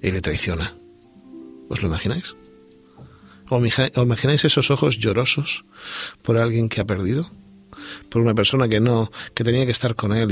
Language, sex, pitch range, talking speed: Spanish, male, 100-130 Hz, 155 wpm